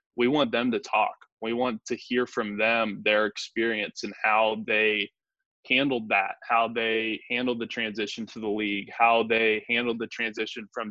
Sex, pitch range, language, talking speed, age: male, 110-125 Hz, English, 175 wpm, 20-39